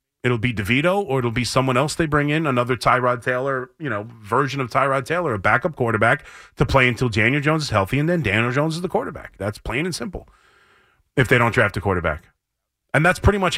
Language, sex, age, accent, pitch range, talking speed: English, male, 30-49, American, 115-145 Hz, 225 wpm